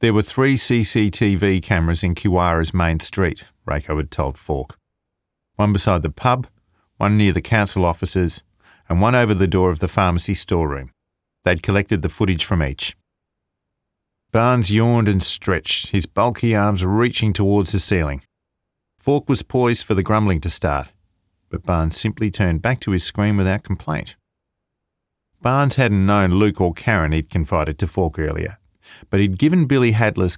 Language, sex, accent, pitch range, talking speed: English, male, Australian, 85-105 Hz, 160 wpm